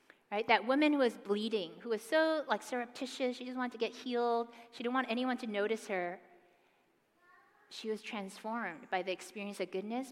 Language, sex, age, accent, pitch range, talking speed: English, female, 30-49, American, 195-250 Hz, 190 wpm